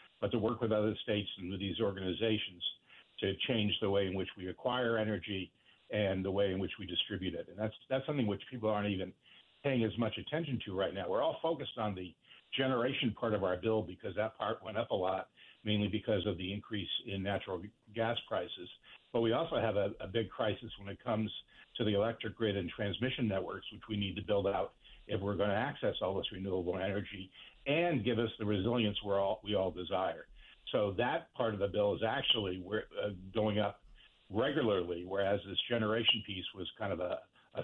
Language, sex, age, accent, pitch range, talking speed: English, male, 60-79, American, 95-115 Hz, 205 wpm